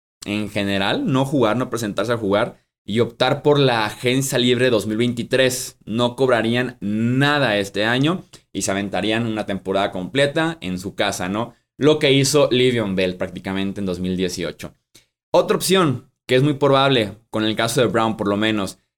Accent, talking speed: Mexican, 165 wpm